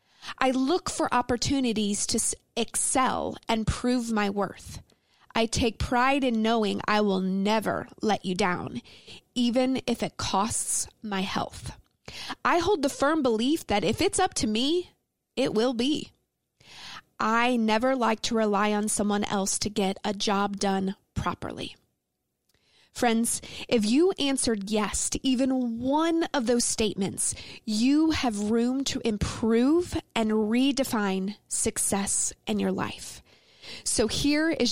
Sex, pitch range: female, 210-255 Hz